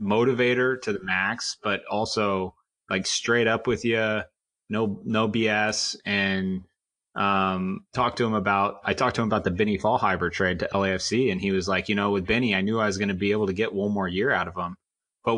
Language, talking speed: English, 220 wpm